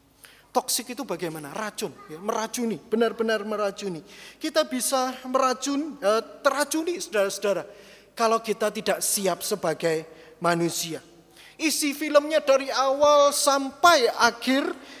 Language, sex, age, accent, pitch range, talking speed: Indonesian, male, 30-49, native, 185-260 Hz, 100 wpm